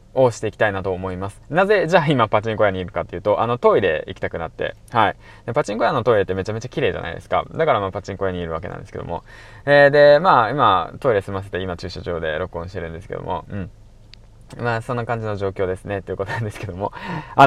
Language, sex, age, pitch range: Japanese, male, 20-39, 100-130 Hz